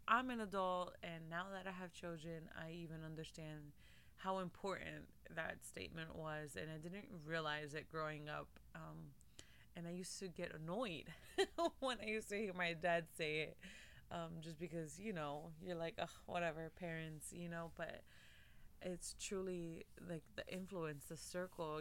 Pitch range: 155-185 Hz